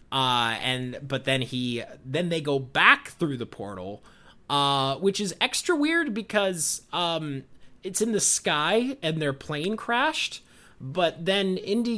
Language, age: English, 20-39